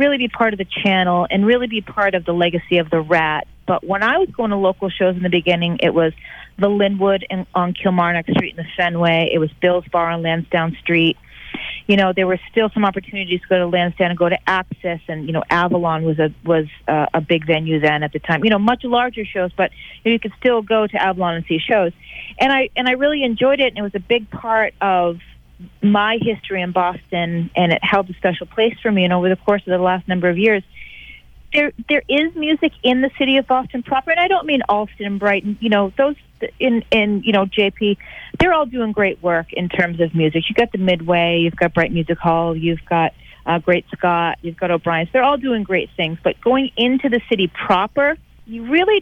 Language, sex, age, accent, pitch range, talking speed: English, female, 40-59, American, 170-230 Hz, 235 wpm